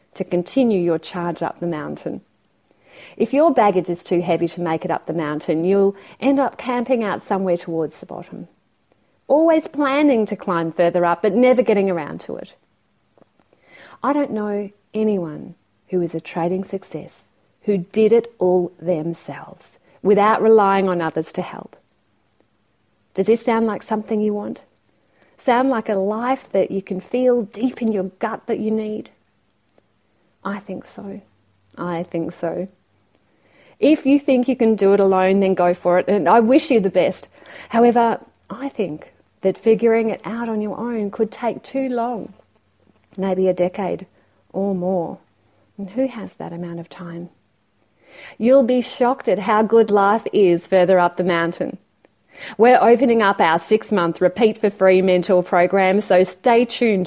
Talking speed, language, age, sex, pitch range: 165 wpm, English, 40-59, female, 175-225 Hz